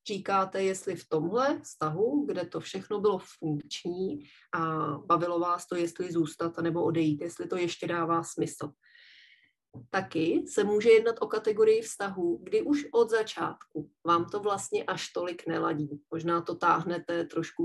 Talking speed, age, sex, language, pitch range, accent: 150 wpm, 30-49, female, Czech, 160-195 Hz, native